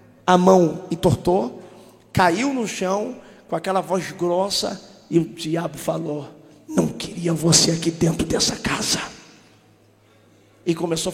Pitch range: 180-270 Hz